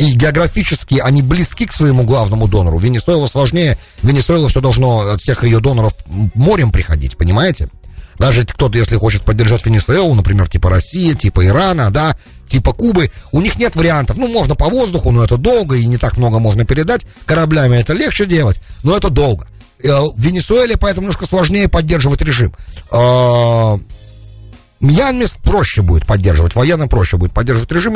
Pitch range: 100-155 Hz